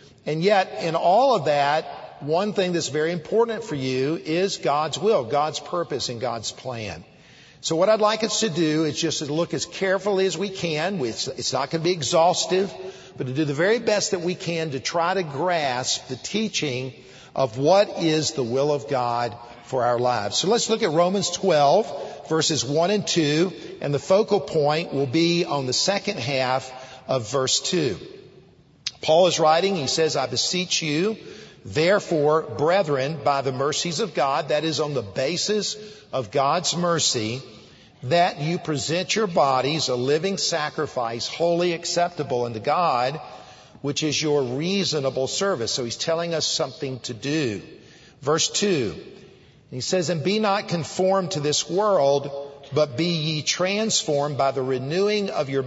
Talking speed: 170 wpm